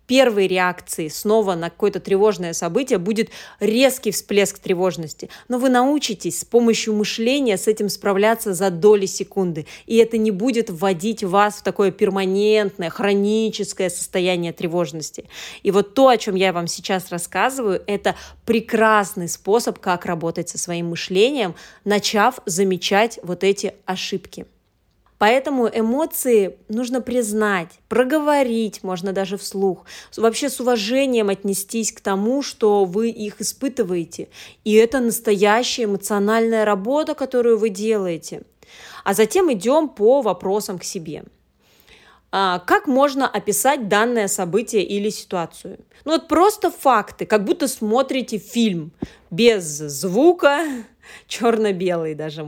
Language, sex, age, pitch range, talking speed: Russian, female, 20-39, 190-240 Hz, 125 wpm